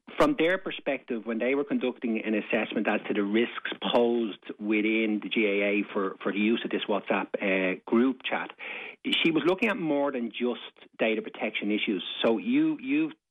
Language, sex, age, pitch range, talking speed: English, male, 30-49, 105-130 Hz, 180 wpm